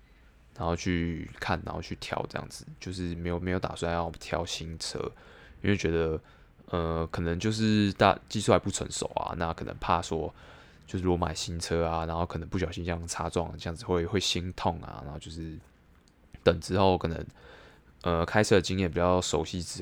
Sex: male